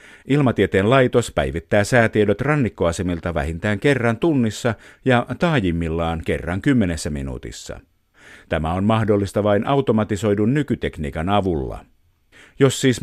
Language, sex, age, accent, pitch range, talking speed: Finnish, male, 50-69, native, 90-115 Hz, 100 wpm